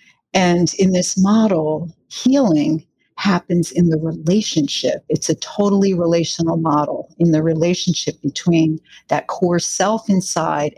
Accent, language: American, English